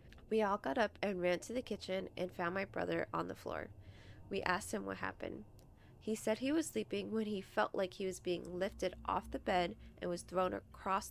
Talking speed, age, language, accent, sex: 220 wpm, 20-39, English, American, female